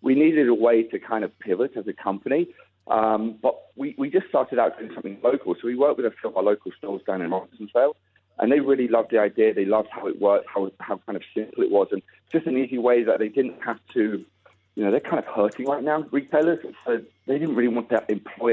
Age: 40-59